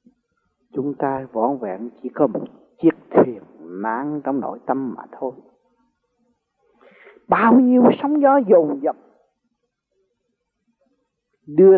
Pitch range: 155-240 Hz